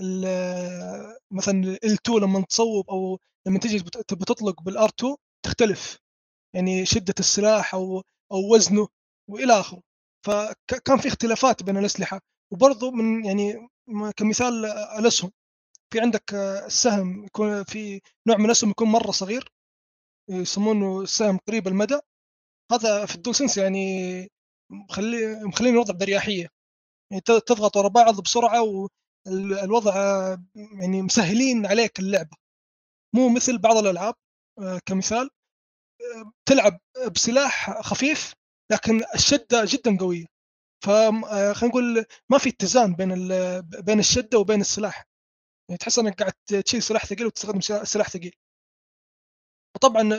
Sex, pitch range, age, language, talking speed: male, 195-235 Hz, 20-39, Arabic, 115 wpm